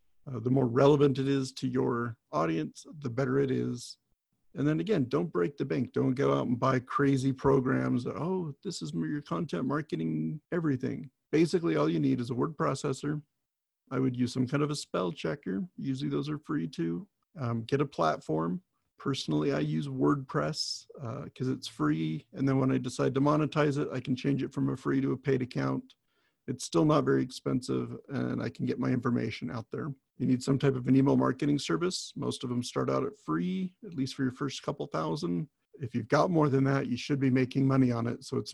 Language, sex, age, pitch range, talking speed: English, male, 50-69, 120-140 Hz, 215 wpm